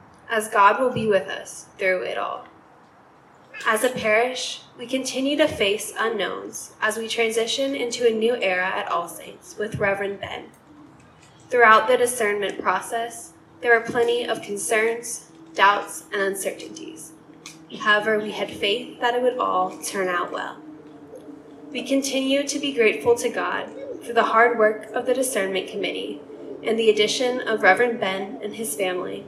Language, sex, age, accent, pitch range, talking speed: English, female, 10-29, American, 195-245 Hz, 160 wpm